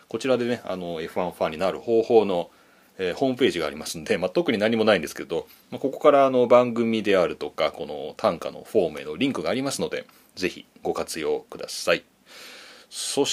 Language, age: Japanese, 30-49